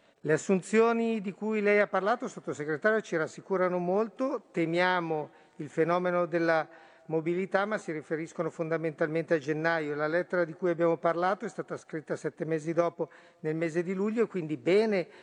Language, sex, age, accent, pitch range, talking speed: Italian, male, 50-69, native, 165-190 Hz, 160 wpm